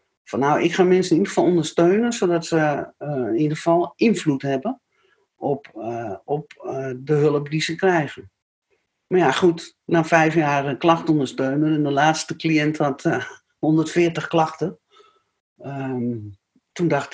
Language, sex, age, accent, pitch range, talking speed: Dutch, male, 60-79, Dutch, 145-175 Hz, 160 wpm